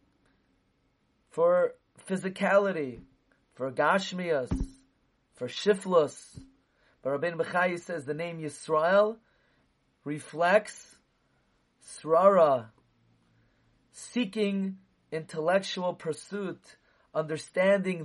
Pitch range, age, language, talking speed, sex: 140-185 Hz, 30-49, English, 65 wpm, male